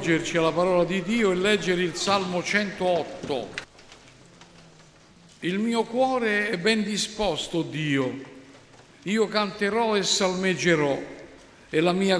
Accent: native